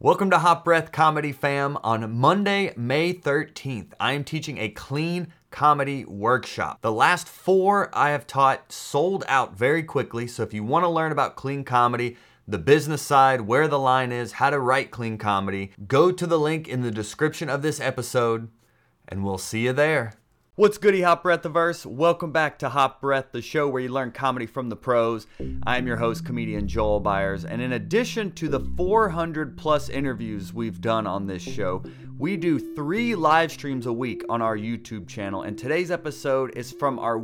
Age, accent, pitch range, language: 30-49, American, 115-165 Hz, English